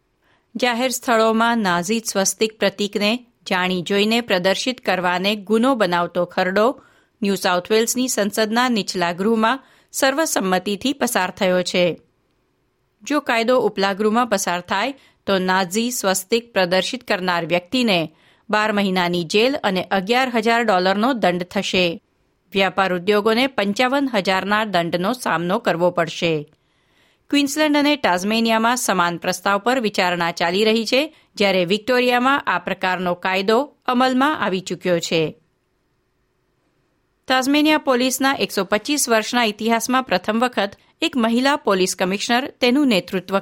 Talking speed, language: 110 wpm, Gujarati